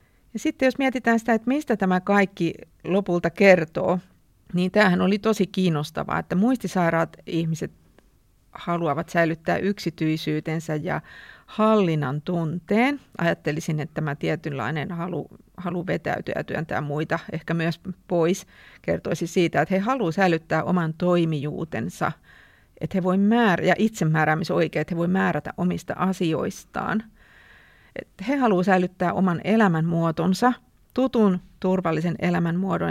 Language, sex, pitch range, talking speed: Finnish, female, 165-200 Hz, 115 wpm